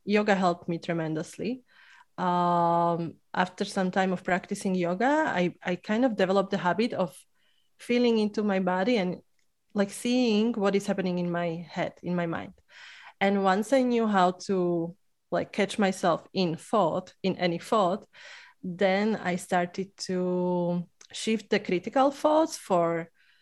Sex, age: female, 20-39